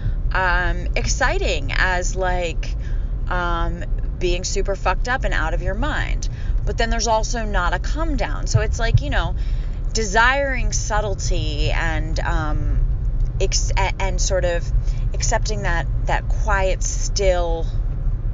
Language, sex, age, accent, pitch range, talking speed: English, female, 30-49, American, 115-165 Hz, 130 wpm